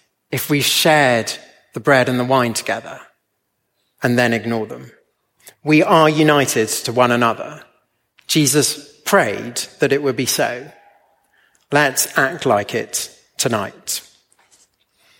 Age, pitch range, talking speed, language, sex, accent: 30-49, 130-170 Hz, 120 wpm, English, male, British